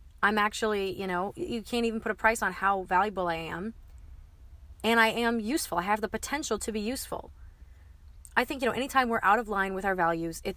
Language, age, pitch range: English, 20-39, 180-225 Hz